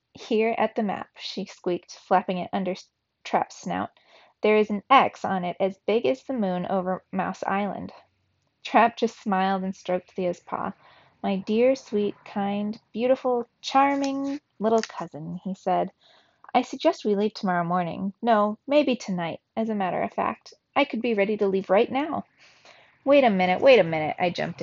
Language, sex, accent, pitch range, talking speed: English, female, American, 190-245 Hz, 175 wpm